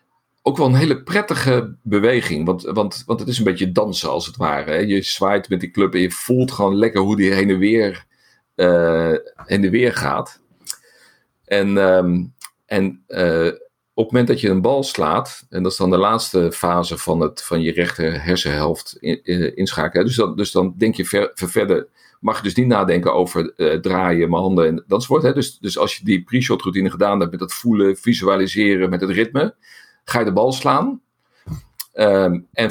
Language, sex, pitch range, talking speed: Dutch, male, 90-120 Hz, 200 wpm